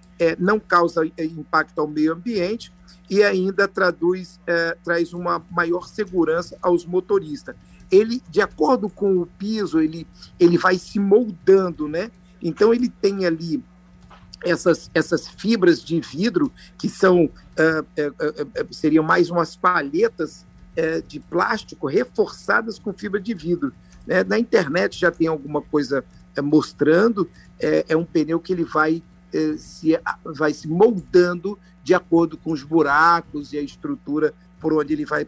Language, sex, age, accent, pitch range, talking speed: Portuguese, male, 50-69, Brazilian, 155-180 Hz, 135 wpm